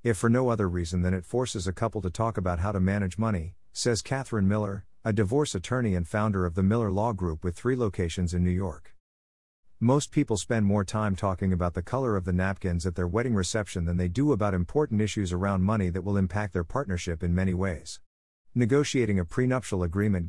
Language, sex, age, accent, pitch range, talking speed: English, male, 50-69, American, 90-115 Hz, 215 wpm